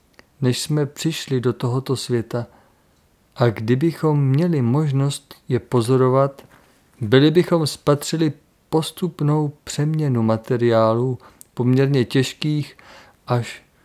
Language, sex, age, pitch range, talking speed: Czech, male, 40-59, 120-150 Hz, 90 wpm